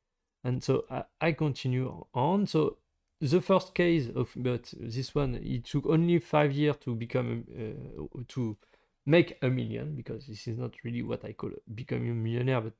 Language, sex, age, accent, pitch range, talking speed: English, male, 30-49, French, 125-170 Hz, 180 wpm